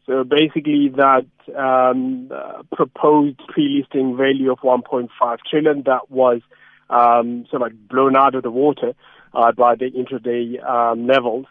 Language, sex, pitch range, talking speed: English, male, 125-150 Hz, 140 wpm